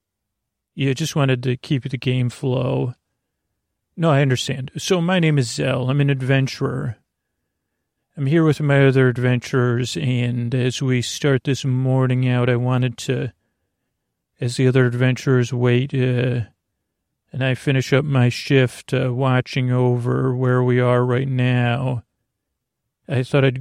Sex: male